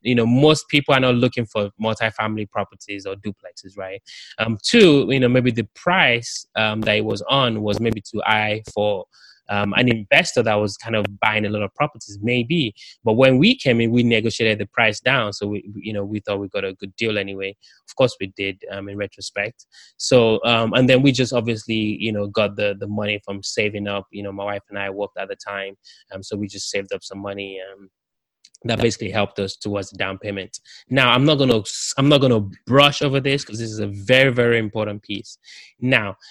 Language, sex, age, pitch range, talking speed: English, male, 20-39, 100-120 Hz, 220 wpm